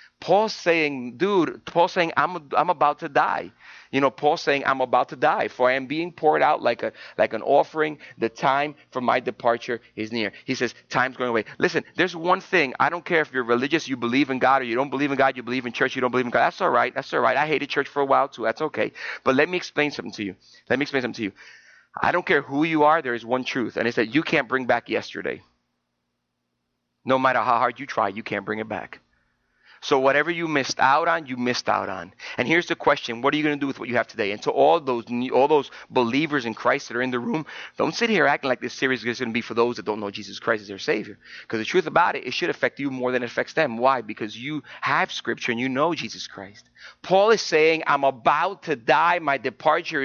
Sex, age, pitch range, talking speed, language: male, 30-49, 125-165 Hz, 265 wpm, English